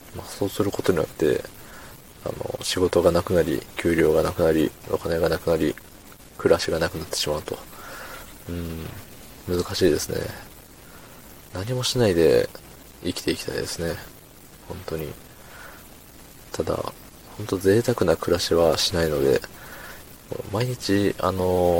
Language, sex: Japanese, male